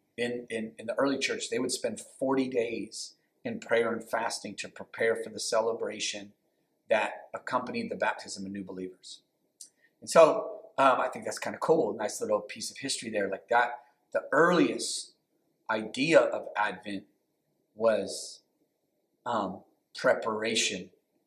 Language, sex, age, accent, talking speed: English, male, 40-59, American, 145 wpm